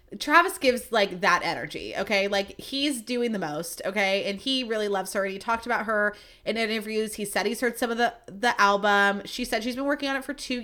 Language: English